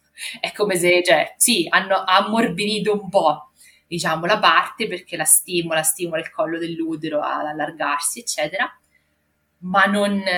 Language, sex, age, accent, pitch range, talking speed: Italian, female, 20-39, native, 160-200 Hz, 140 wpm